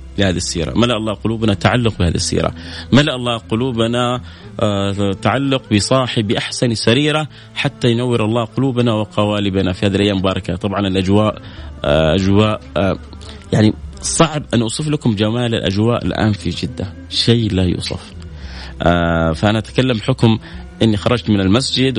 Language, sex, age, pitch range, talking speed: Arabic, male, 30-49, 95-125 Hz, 140 wpm